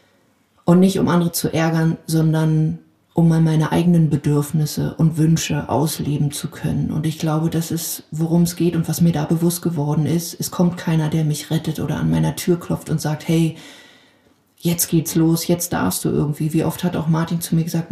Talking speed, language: 205 wpm, German